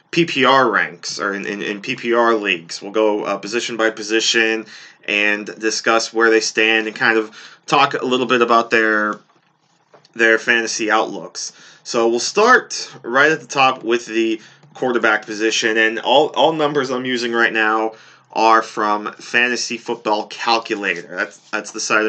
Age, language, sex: 20-39, English, male